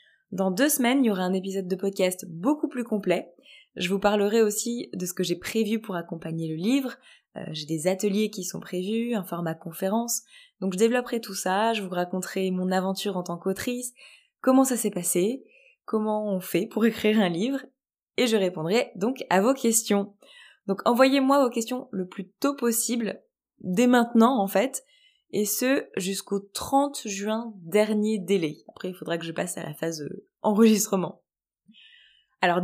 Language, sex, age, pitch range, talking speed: French, female, 20-39, 185-235 Hz, 180 wpm